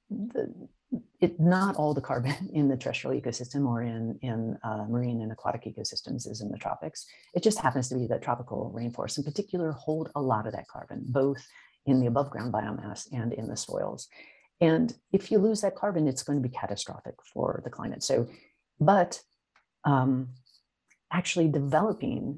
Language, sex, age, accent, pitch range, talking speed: English, female, 50-69, American, 120-155 Hz, 175 wpm